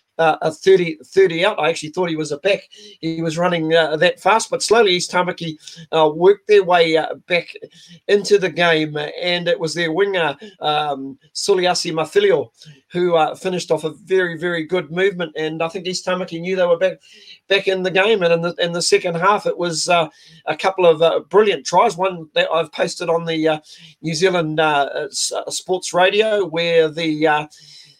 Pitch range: 155-180 Hz